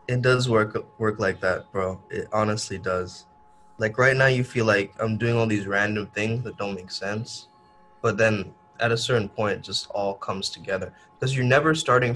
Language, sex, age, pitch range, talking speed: English, male, 20-39, 105-125 Hz, 195 wpm